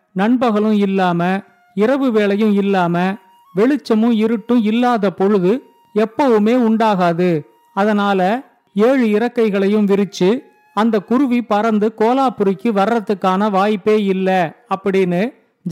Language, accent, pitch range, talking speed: Tamil, native, 195-230 Hz, 90 wpm